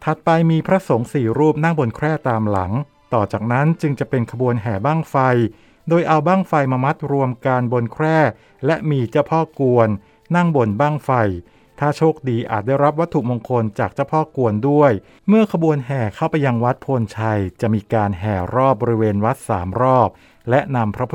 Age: 60-79